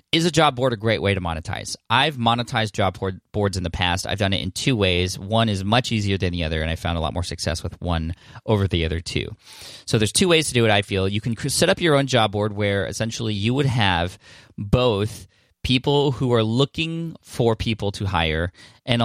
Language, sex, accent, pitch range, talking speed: English, male, American, 90-115 Hz, 235 wpm